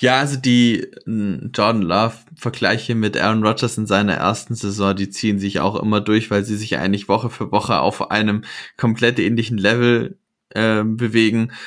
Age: 20-39